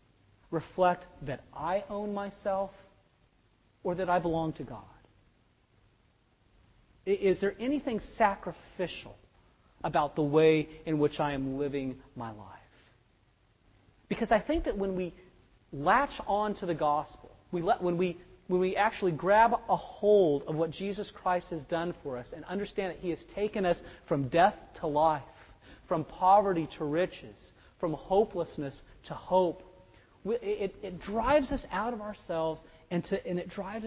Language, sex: English, male